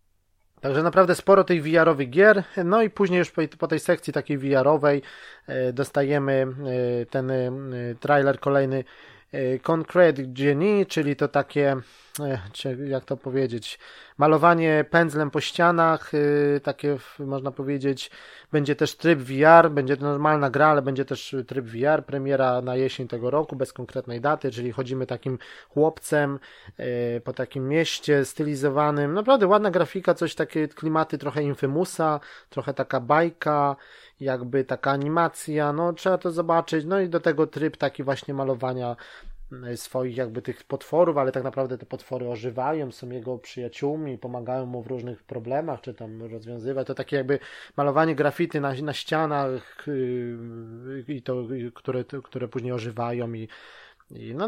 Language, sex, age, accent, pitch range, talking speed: Polish, male, 20-39, native, 130-155 Hz, 145 wpm